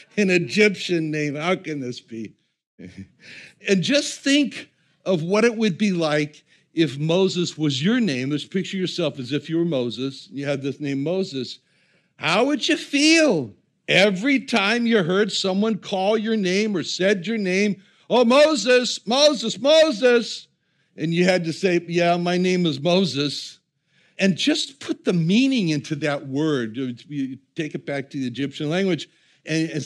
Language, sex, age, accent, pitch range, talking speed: English, male, 60-79, American, 160-220 Hz, 160 wpm